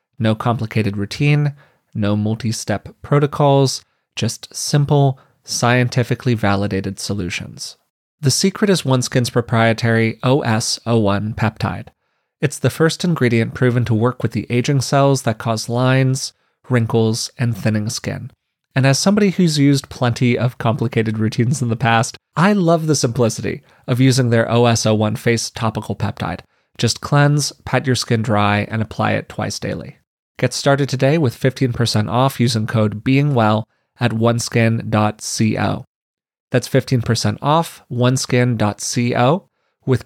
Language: English